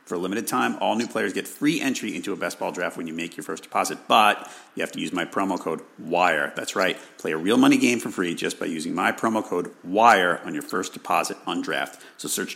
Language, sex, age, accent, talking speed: English, male, 40-59, American, 260 wpm